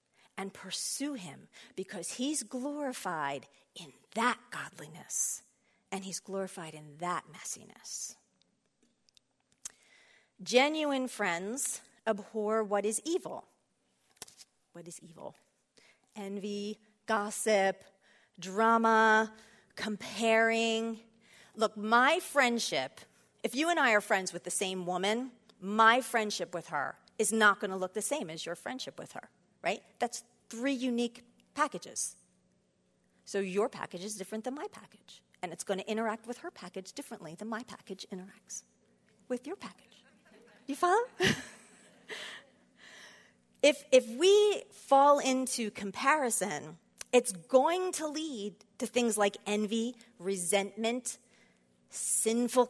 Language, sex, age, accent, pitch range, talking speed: English, female, 40-59, American, 195-250 Hz, 120 wpm